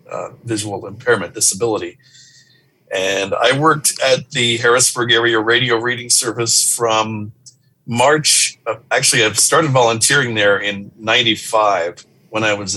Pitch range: 105-130 Hz